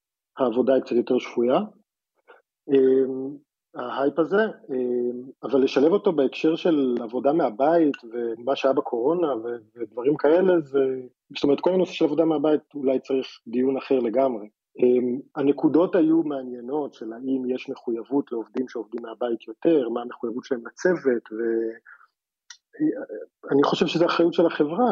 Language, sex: Hebrew, male